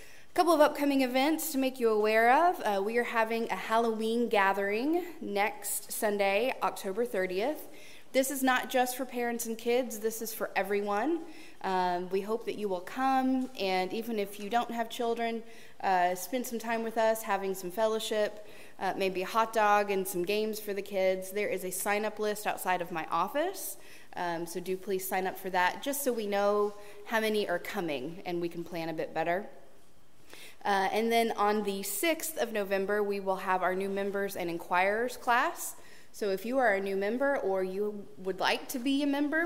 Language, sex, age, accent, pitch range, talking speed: English, female, 20-39, American, 190-235 Hz, 200 wpm